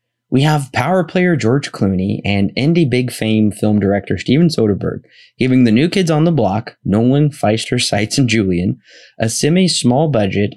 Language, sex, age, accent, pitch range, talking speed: English, male, 20-39, American, 100-125 Hz, 165 wpm